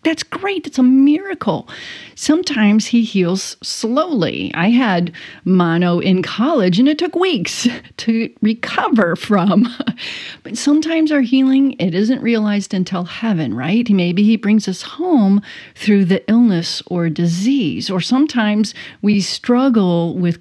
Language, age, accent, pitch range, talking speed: English, 40-59, American, 185-250 Hz, 135 wpm